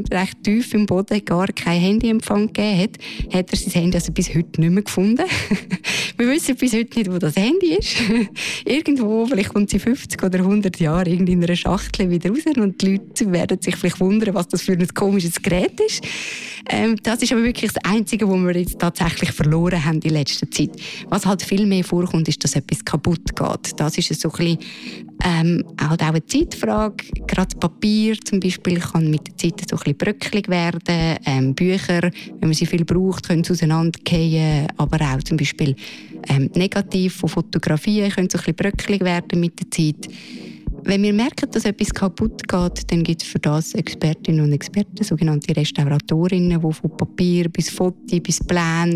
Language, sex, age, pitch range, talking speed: German, female, 20-39, 170-210 Hz, 180 wpm